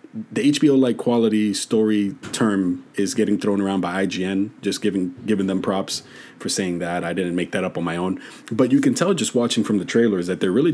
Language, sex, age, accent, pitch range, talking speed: English, male, 30-49, American, 90-115 Hz, 220 wpm